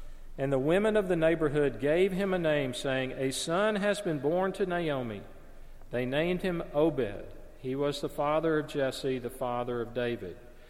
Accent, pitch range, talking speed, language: American, 115-140 Hz, 180 wpm, English